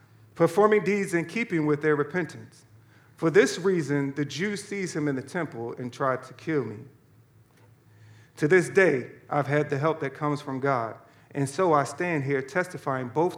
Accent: American